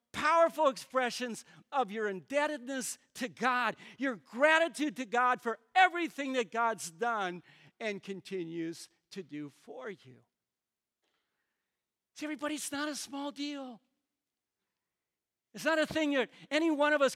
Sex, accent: male, American